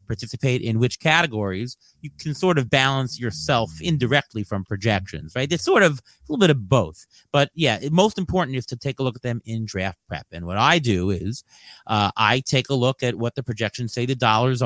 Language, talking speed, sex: English, 215 wpm, male